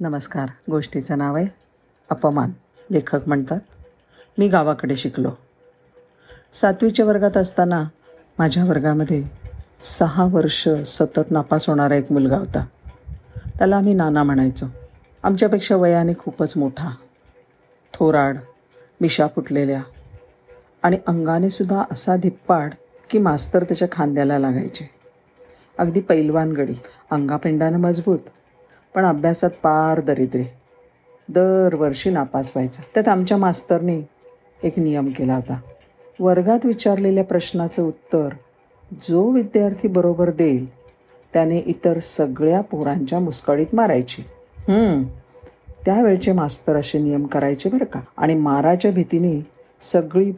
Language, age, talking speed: Marathi, 50-69, 105 wpm